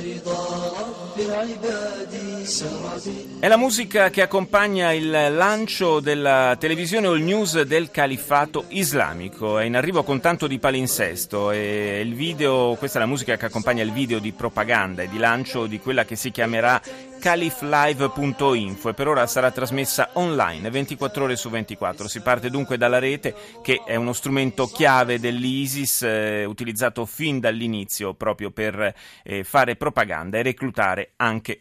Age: 30-49